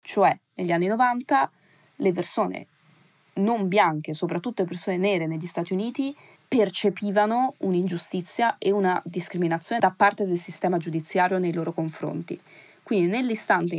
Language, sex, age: Italian, female, 30-49